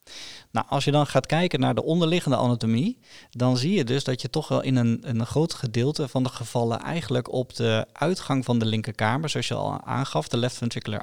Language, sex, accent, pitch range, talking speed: Dutch, male, Dutch, 120-140 Hz, 225 wpm